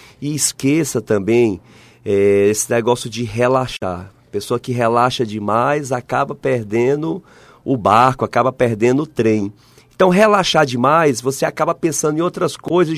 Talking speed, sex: 135 wpm, male